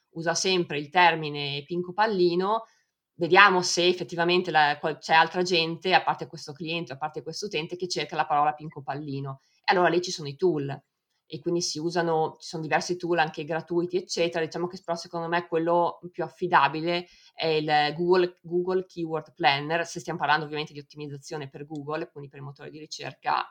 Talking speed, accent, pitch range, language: 190 wpm, native, 155-180 Hz, Italian